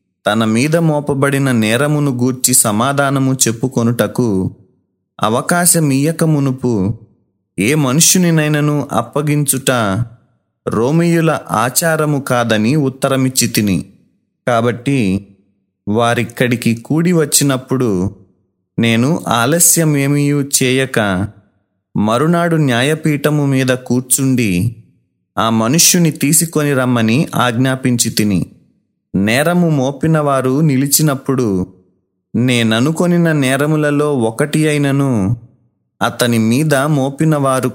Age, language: 30-49, Telugu